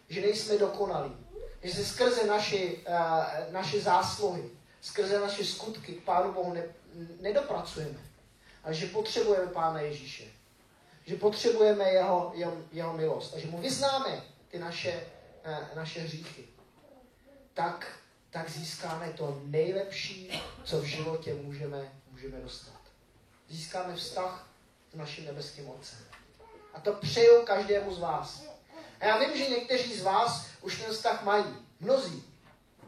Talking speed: 125 wpm